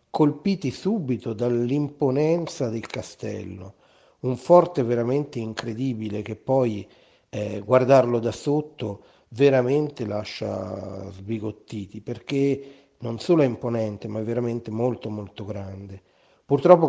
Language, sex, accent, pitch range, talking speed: Italian, male, native, 105-130 Hz, 105 wpm